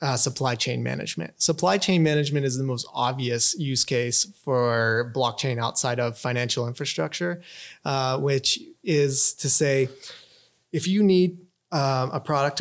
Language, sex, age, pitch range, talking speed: English, male, 30-49, 125-155 Hz, 145 wpm